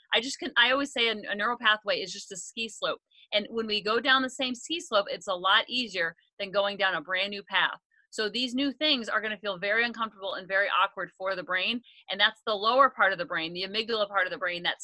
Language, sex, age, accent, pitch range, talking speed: English, female, 30-49, American, 195-245 Hz, 265 wpm